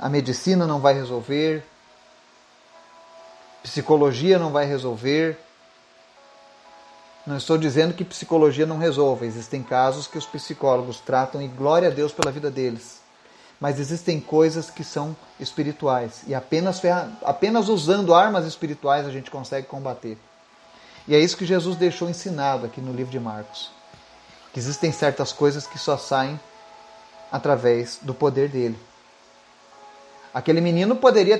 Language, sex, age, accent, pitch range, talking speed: Portuguese, male, 40-59, Brazilian, 125-180 Hz, 135 wpm